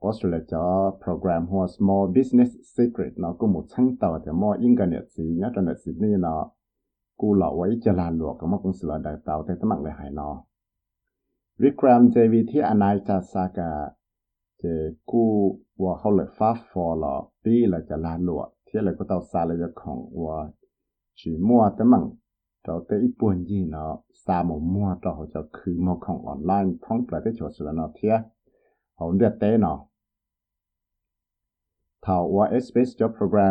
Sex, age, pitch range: male, 60-79, 85-110 Hz